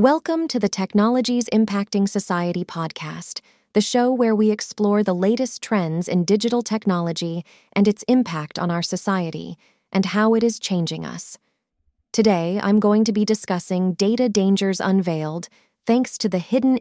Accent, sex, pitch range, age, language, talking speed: American, female, 170-215 Hz, 20-39, English, 155 wpm